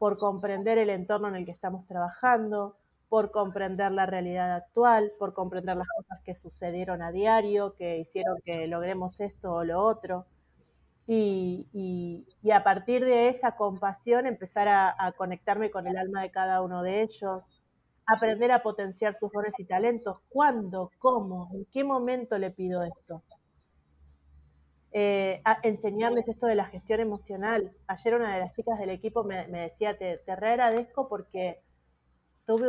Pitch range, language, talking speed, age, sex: 185-230 Hz, Spanish, 160 wpm, 30-49, female